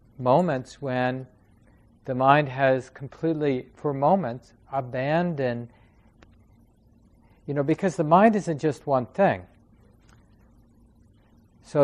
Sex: male